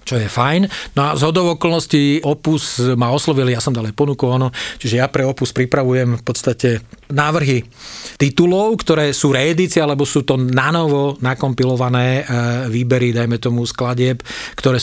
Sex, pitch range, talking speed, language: male, 120-140 Hz, 145 wpm, Slovak